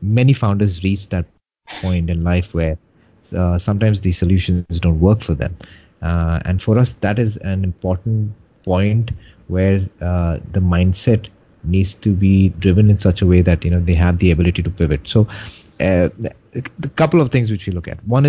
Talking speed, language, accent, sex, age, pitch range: 185 wpm, English, Indian, male, 30-49, 90-105 Hz